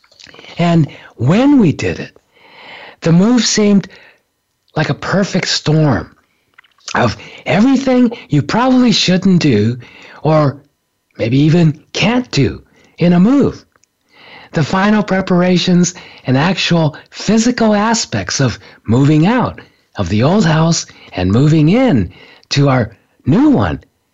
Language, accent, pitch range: English, American, 140-190 Hz